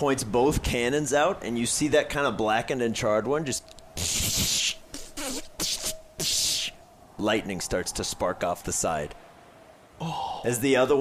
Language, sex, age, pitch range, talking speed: English, male, 30-49, 110-145 Hz, 135 wpm